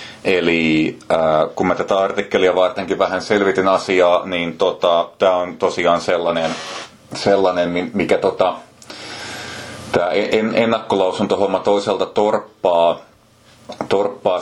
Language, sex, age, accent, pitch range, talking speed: Finnish, male, 30-49, native, 85-105 Hz, 105 wpm